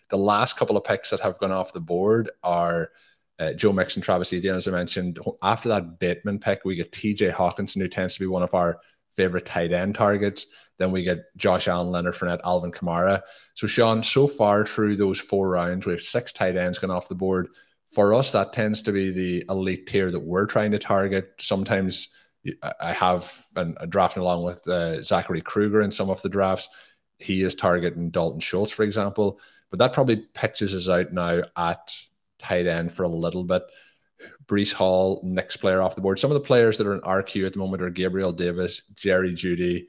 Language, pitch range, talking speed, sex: English, 90-100 Hz, 210 wpm, male